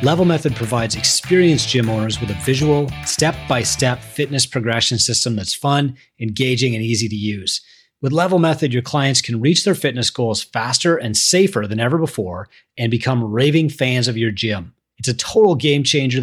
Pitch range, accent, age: 110-140 Hz, American, 30-49